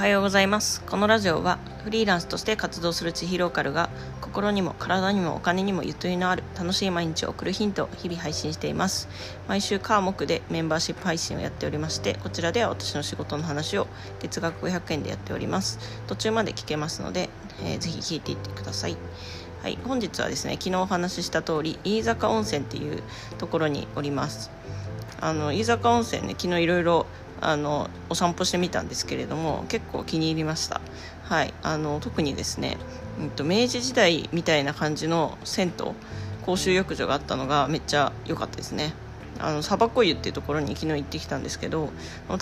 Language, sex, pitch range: Japanese, female, 110-190 Hz